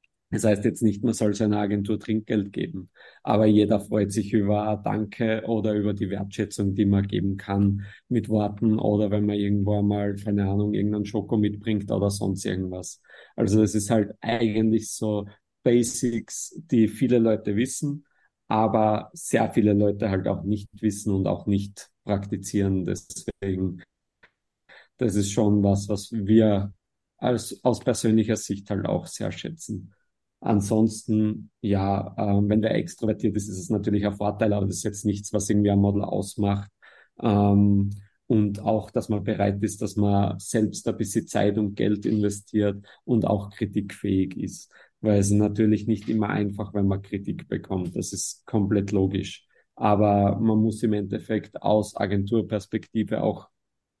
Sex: male